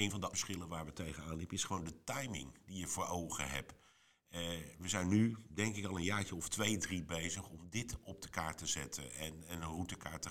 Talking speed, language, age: 245 wpm, English, 50-69